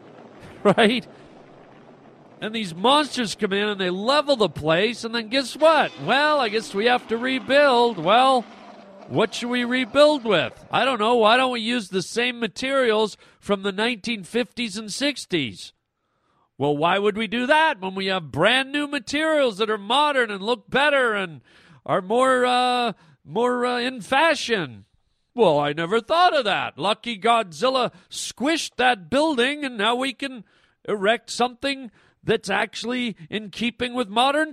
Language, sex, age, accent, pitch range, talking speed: English, male, 40-59, American, 170-245 Hz, 160 wpm